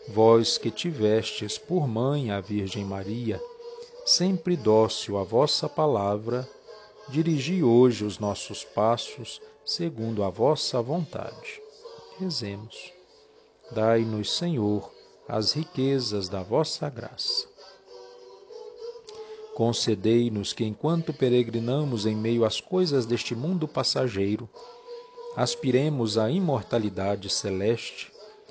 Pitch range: 110-175 Hz